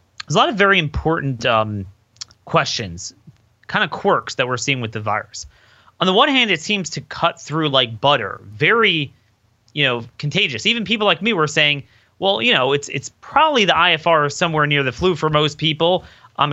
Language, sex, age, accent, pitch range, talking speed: English, male, 30-49, American, 120-165 Hz, 195 wpm